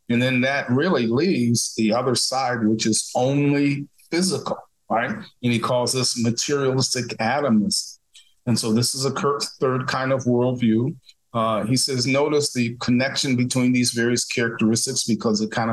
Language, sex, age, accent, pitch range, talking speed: English, male, 40-59, American, 110-130 Hz, 160 wpm